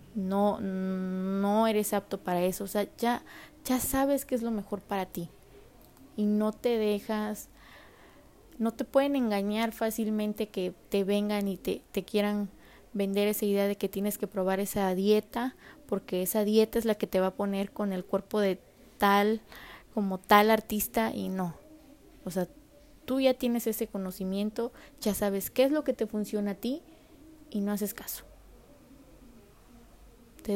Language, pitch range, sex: Spanish, 200-250 Hz, female